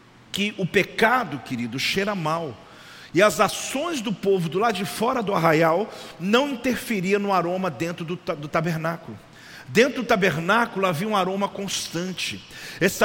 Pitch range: 175-220 Hz